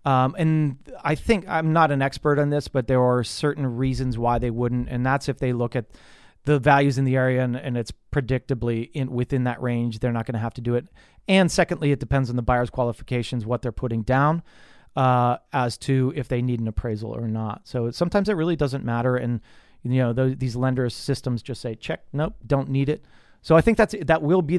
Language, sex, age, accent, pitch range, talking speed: English, male, 30-49, American, 120-150 Hz, 225 wpm